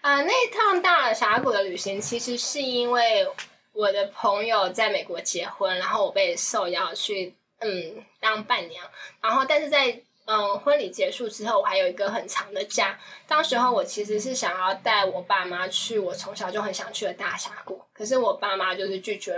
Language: Chinese